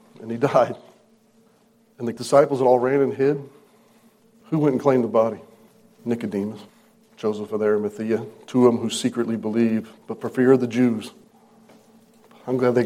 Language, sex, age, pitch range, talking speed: English, male, 40-59, 120-155 Hz, 170 wpm